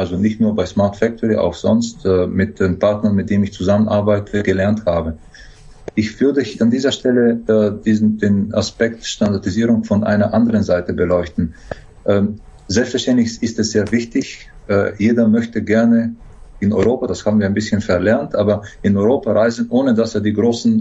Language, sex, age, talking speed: German, male, 40-59, 175 wpm